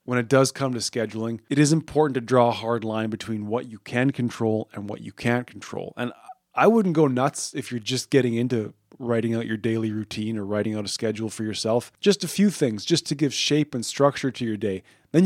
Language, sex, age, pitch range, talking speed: English, male, 20-39, 110-130 Hz, 235 wpm